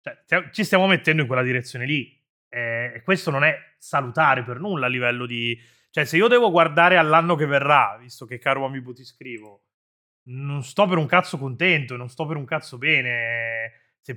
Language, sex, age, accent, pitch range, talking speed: Italian, male, 30-49, native, 125-150 Hz, 190 wpm